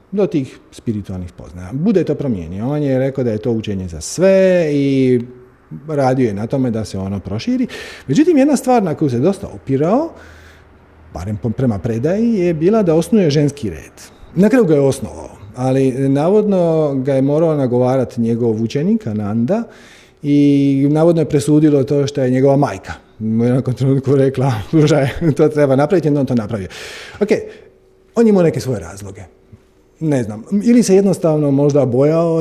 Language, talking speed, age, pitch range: Croatian, 160 wpm, 40-59, 120-170 Hz